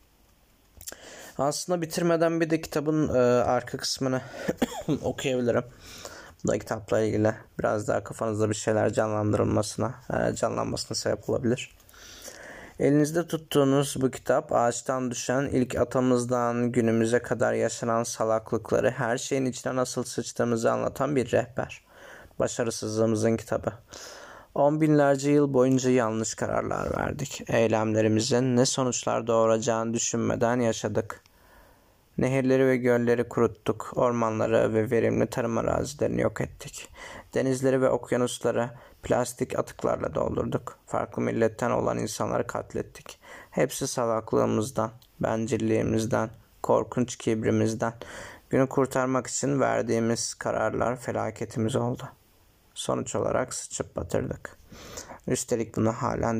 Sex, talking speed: male, 105 wpm